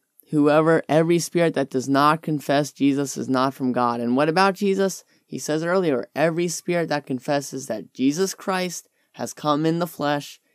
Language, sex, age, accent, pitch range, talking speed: English, male, 10-29, American, 130-160 Hz, 175 wpm